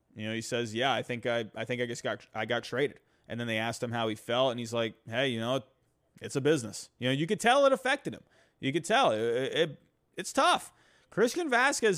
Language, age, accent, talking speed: English, 30-49, American, 250 wpm